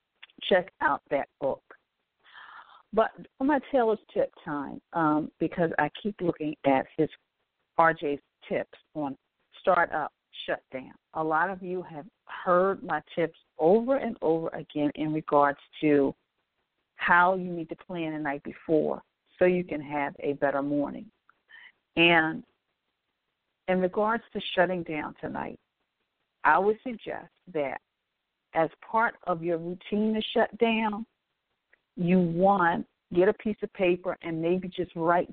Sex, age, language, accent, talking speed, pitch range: female, 50-69, English, American, 145 wpm, 155-200 Hz